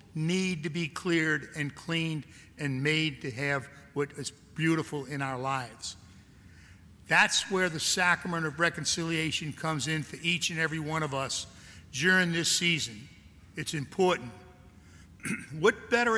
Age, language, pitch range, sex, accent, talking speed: 60-79, English, 135-180 Hz, male, American, 140 wpm